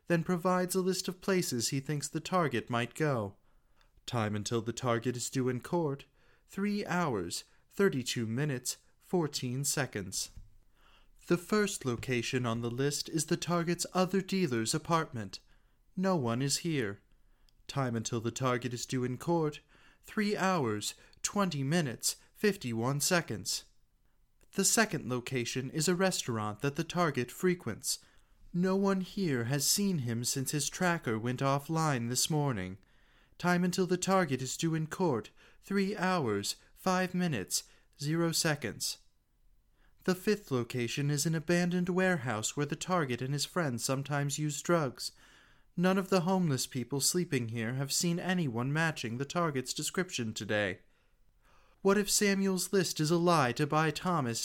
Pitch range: 120-180 Hz